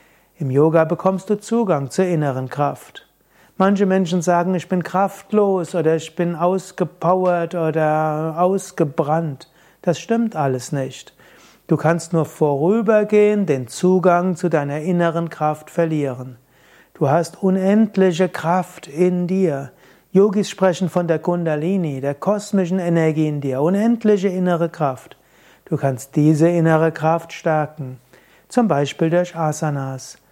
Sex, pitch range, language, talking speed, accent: male, 155-190 Hz, German, 125 wpm, German